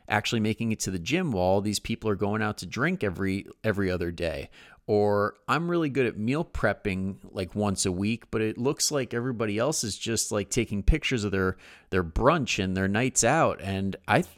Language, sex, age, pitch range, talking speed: English, male, 30-49, 95-115 Hz, 215 wpm